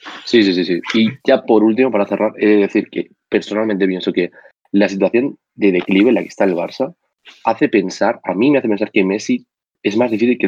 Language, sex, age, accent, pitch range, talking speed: Spanish, male, 20-39, Spanish, 90-105 Hz, 230 wpm